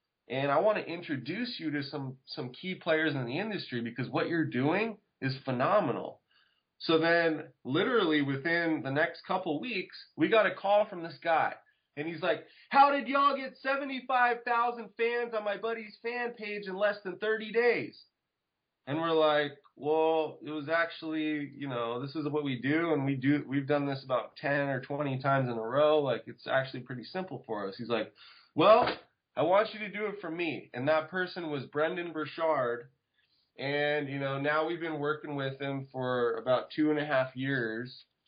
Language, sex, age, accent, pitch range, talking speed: English, male, 20-39, American, 135-170 Hz, 195 wpm